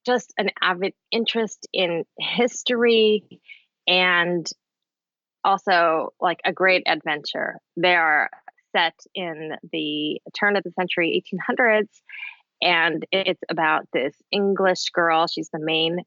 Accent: American